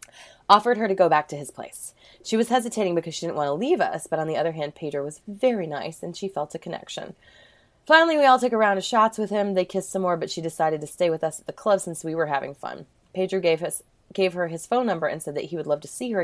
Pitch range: 155-215 Hz